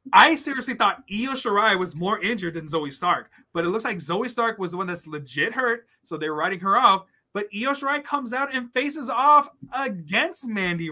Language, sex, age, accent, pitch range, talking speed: English, male, 20-39, American, 145-205 Hz, 210 wpm